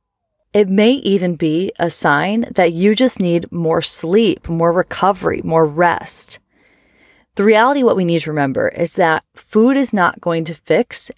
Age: 30-49